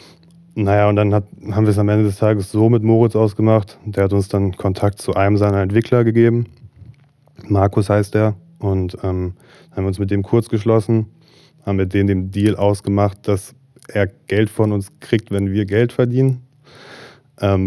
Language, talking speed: German, 185 wpm